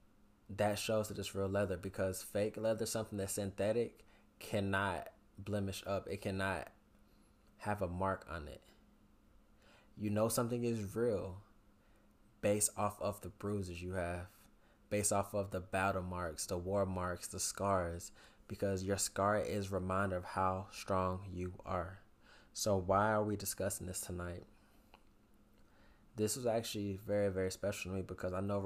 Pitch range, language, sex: 95-105 Hz, English, male